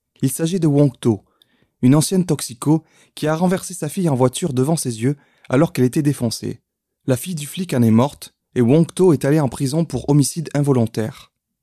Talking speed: 200 wpm